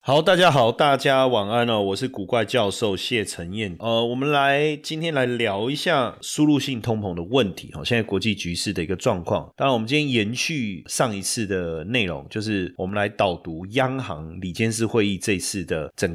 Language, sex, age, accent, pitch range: Chinese, male, 30-49, native, 95-125 Hz